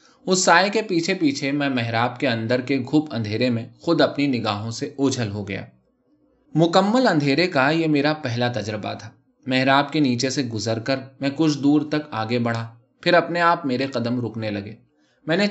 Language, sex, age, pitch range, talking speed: Urdu, male, 20-39, 115-150 Hz, 190 wpm